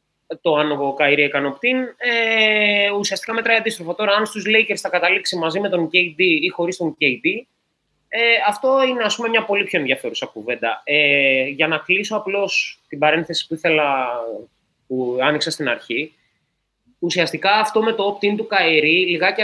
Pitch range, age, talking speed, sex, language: 140-195 Hz, 20-39, 165 wpm, male, Greek